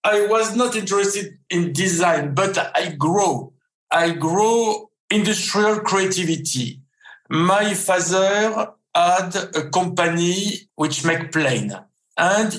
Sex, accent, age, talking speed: male, French, 60-79, 105 wpm